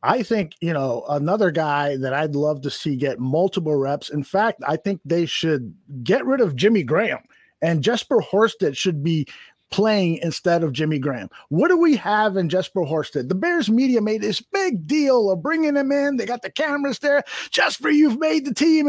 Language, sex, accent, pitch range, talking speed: English, male, American, 205-305 Hz, 200 wpm